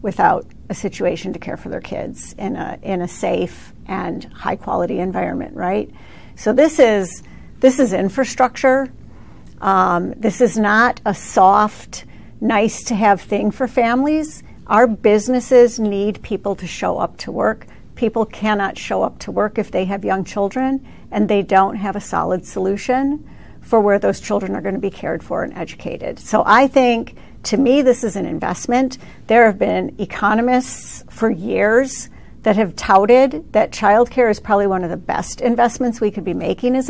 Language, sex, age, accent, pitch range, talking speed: English, female, 50-69, American, 200-250 Hz, 170 wpm